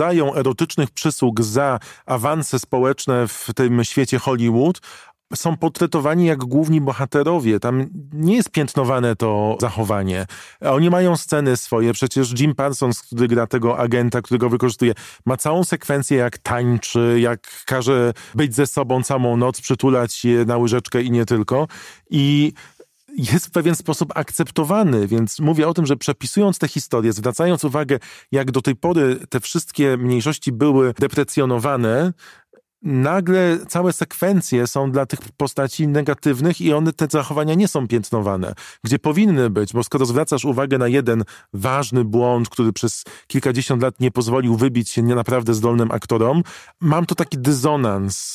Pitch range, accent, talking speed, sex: 120-150 Hz, native, 150 wpm, male